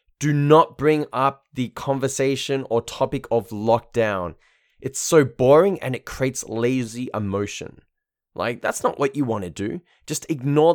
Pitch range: 110-140 Hz